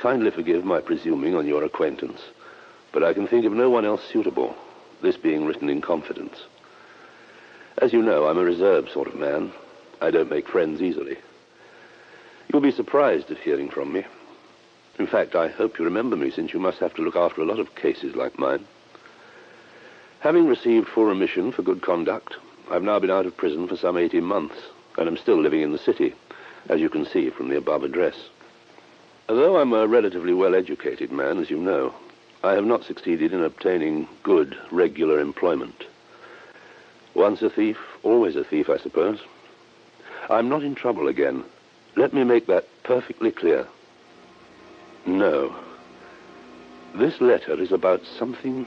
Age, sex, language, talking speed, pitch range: 60-79, male, English, 170 wpm, 330-415 Hz